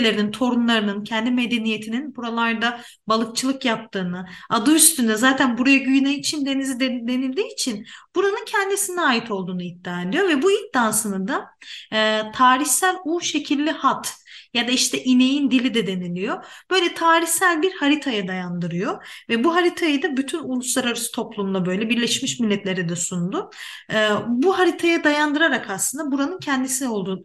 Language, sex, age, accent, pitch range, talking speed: Turkish, female, 40-59, native, 215-295 Hz, 135 wpm